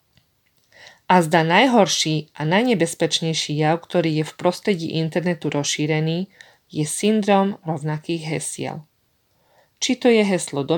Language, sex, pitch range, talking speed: Slovak, female, 155-210 Hz, 115 wpm